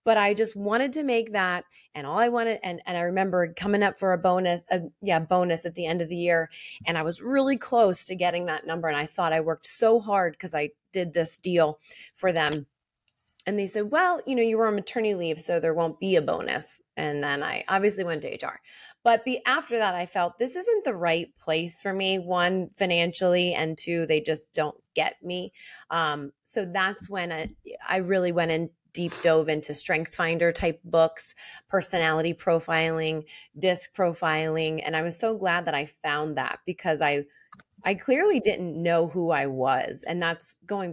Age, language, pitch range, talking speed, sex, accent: 30-49, English, 160-190 Hz, 205 wpm, female, American